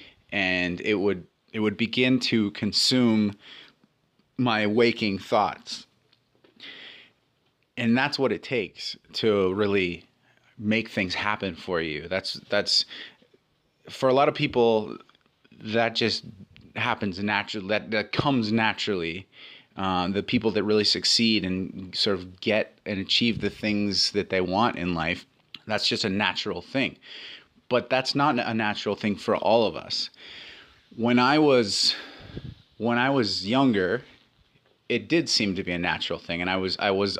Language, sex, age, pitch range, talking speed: English, male, 30-49, 95-115 Hz, 150 wpm